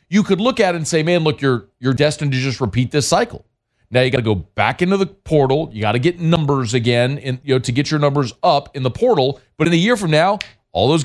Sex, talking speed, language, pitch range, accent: male, 275 wpm, English, 105-145 Hz, American